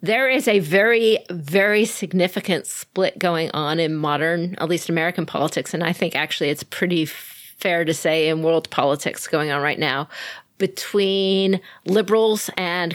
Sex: female